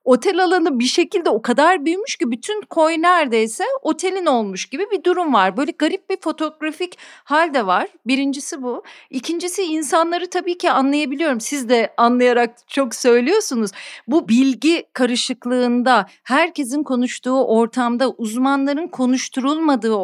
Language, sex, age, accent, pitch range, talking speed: Turkish, female, 40-59, native, 245-345 Hz, 130 wpm